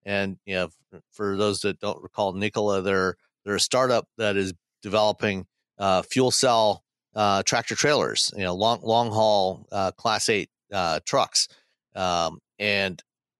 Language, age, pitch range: English, 50-69, 95-110 Hz